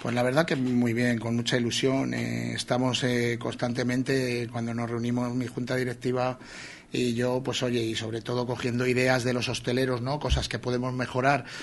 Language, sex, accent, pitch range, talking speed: Spanish, male, Spanish, 125-145 Hz, 195 wpm